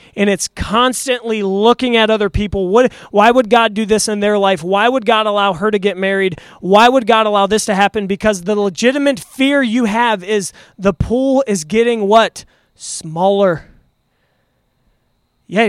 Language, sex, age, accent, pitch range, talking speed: English, male, 20-39, American, 190-230 Hz, 170 wpm